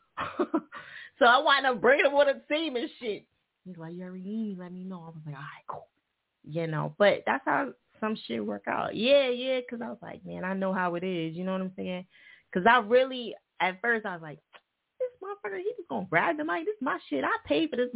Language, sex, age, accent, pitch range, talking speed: English, female, 20-39, American, 170-275 Hz, 250 wpm